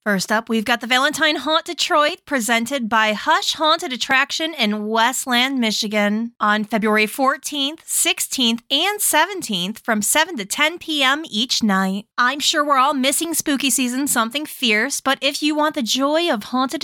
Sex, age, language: female, 20-39, English